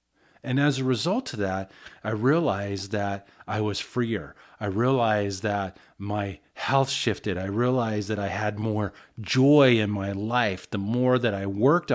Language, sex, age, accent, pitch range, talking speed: English, male, 30-49, American, 100-125 Hz, 165 wpm